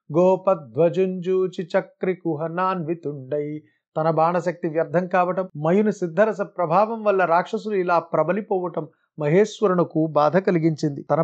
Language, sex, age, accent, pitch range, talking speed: Telugu, male, 30-49, native, 165-190 Hz, 95 wpm